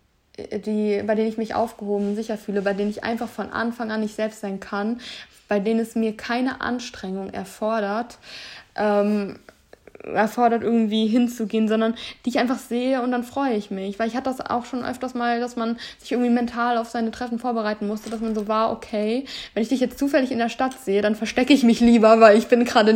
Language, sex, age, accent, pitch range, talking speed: German, female, 20-39, German, 210-240 Hz, 210 wpm